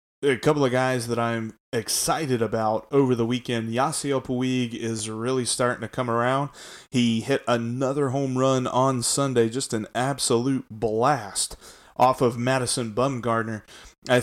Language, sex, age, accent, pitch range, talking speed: English, male, 30-49, American, 115-140 Hz, 150 wpm